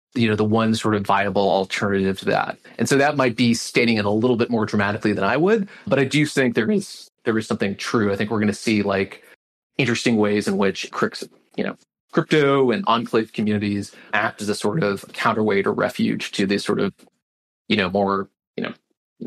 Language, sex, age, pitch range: English, male, 30-49, 100-130 Hz